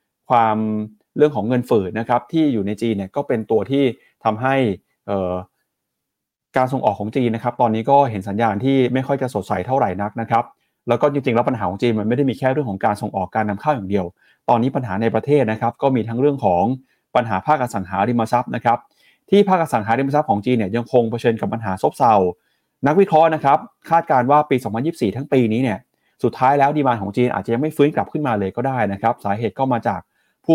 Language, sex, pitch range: Thai, male, 110-140 Hz